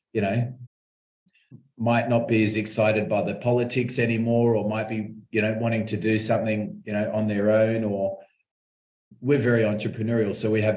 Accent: Australian